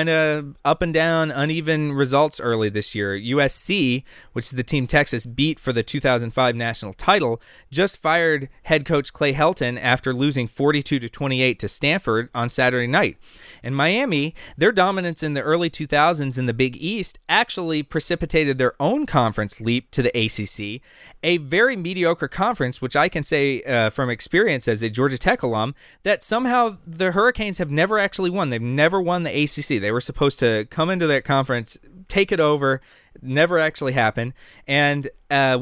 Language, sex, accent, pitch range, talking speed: English, male, American, 125-165 Hz, 175 wpm